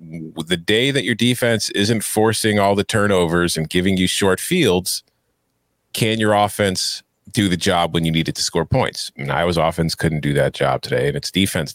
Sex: male